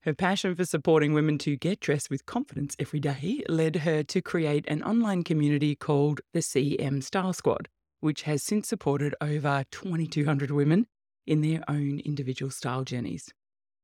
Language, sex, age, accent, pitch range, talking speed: English, female, 20-39, Australian, 140-170 Hz, 160 wpm